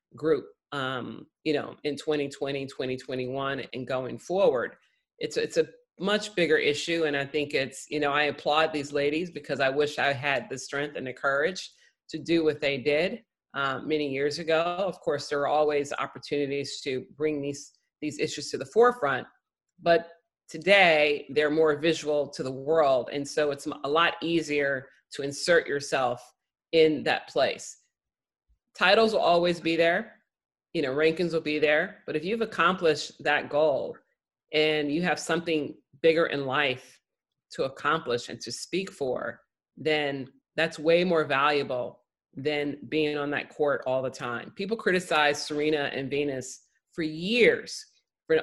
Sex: female